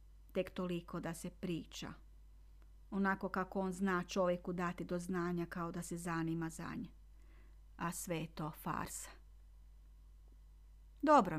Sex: female